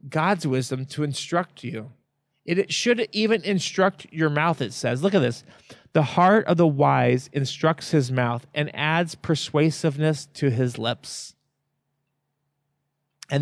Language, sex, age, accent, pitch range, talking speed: English, male, 40-59, American, 130-155 Hz, 145 wpm